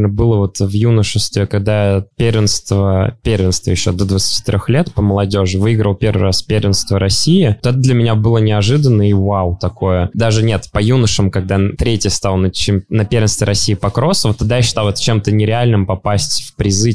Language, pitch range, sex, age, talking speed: English, 100-115 Hz, male, 20-39, 185 wpm